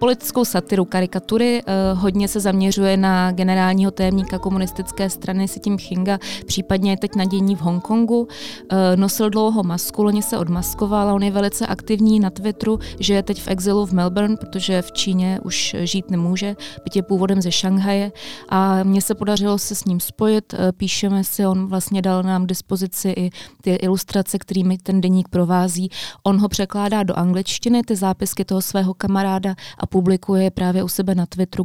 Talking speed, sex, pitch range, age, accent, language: 175 wpm, female, 185-200 Hz, 20-39, native, Czech